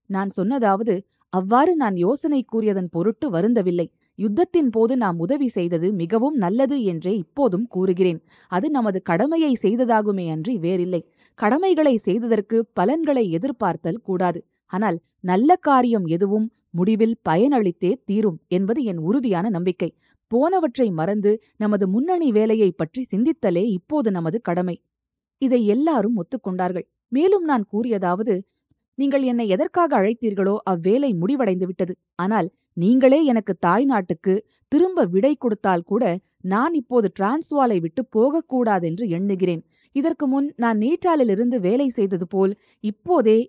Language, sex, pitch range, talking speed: Tamil, female, 185-260 Hz, 120 wpm